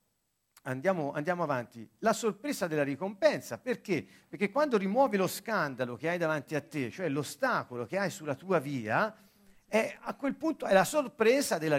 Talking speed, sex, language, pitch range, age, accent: 170 wpm, male, Italian, 175-235 Hz, 50-69, native